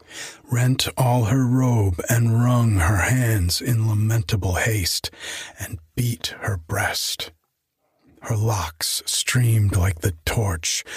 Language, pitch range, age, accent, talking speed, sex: English, 90-115 Hz, 40-59, American, 115 wpm, male